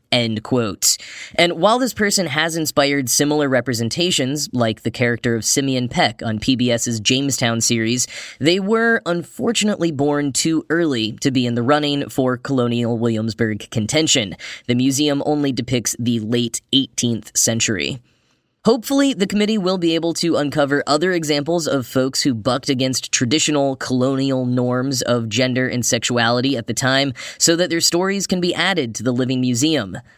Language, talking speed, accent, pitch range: English, 155 wpm, American, 120-155 Hz